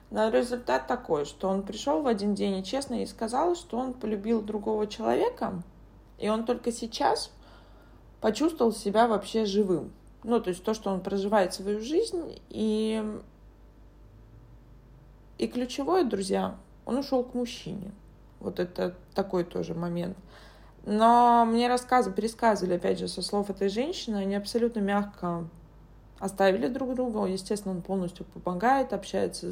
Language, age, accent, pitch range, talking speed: Russian, 20-39, native, 185-235 Hz, 140 wpm